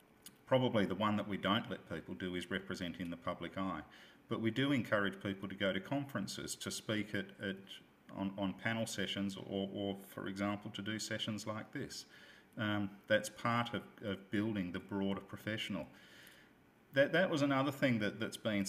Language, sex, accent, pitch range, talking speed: English, male, Australian, 100-115 Hz, 185 wpm